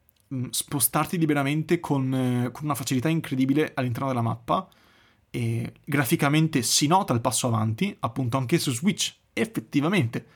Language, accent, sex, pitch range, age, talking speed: Italian, native, male, 125-160 Hz, 30-49, 125 wpm